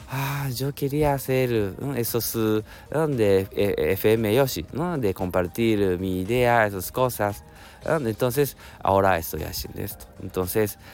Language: Japanese